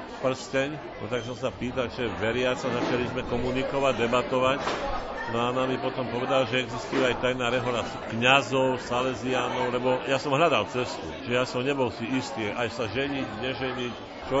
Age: 50-69